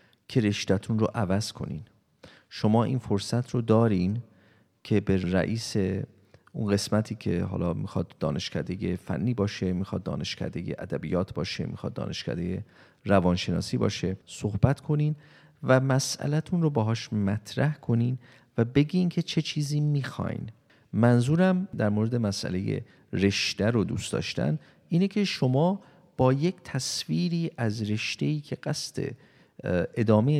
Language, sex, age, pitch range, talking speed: Persian, male, 40-59, 100-140 Hz, 120 wpm